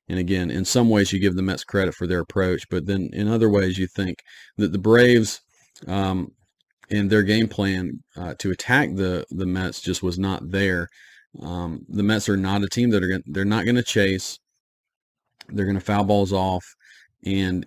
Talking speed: 205 wpm